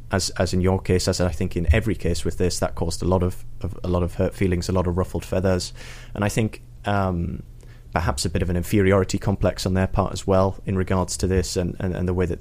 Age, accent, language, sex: 20-39, British, English, male